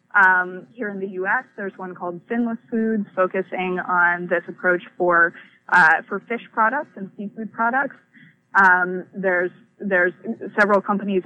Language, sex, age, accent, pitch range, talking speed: English, female, 20-39, American, 180-210 Hz, 145 wpm